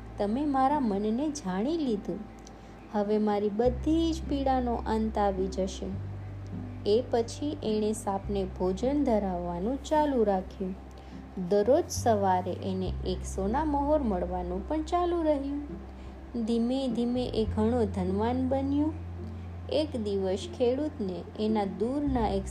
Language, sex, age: Gujarati, female, 20-39